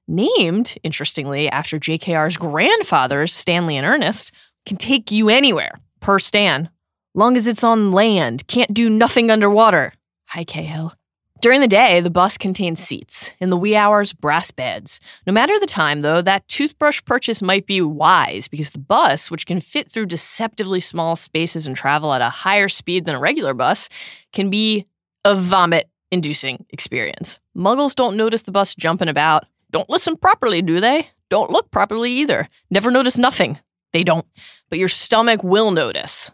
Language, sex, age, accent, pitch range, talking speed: English, female, 20-39, American, 155-215 Hz, 165 wpm